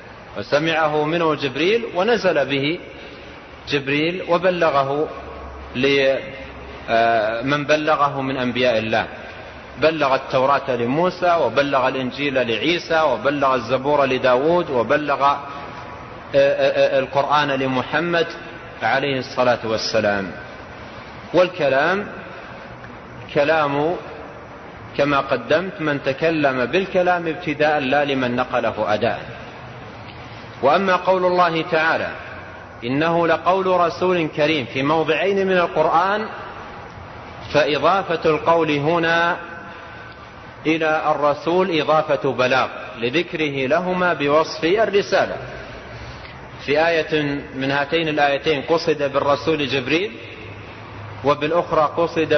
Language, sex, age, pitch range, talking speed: Arabic, male, 40-59, 130-165 Hz, 80 wpm